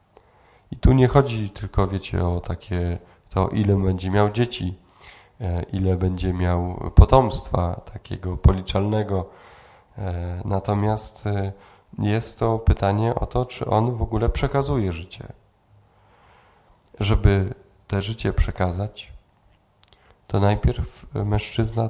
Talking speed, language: 105 wpm, Polish